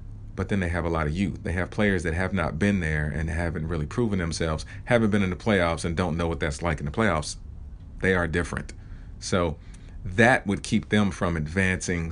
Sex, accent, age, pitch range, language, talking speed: male, American, 40-59, 85-100 Hz, English, 225 wpm